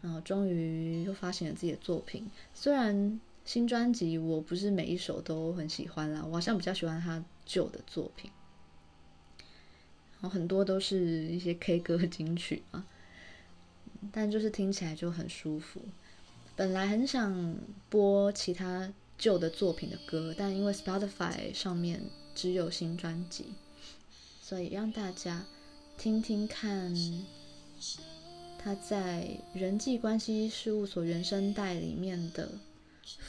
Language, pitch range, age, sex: Chinese, 165-205 Hz, 20-39, female